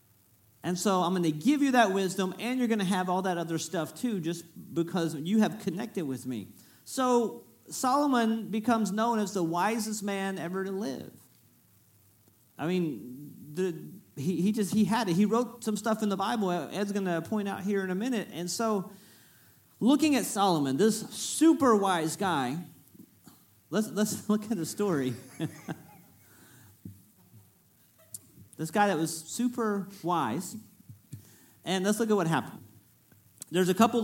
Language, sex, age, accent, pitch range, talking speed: English, male, 40-59, American, 140-205 Hz, 160 wpm